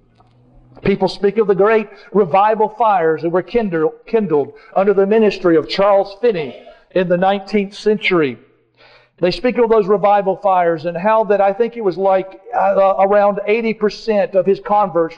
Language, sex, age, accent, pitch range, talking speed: English, male, 50-69, American, 155-195 Hz, 155 wpm